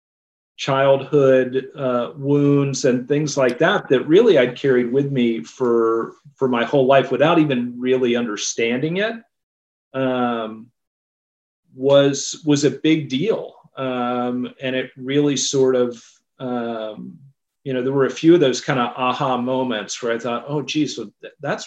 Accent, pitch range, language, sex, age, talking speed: American, 120-140 Hz, English, male, 40-59, 150 wpm